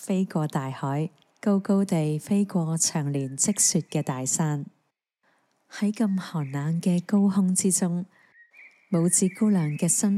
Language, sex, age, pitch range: Chinese, female, 20-39, 150-190 Hz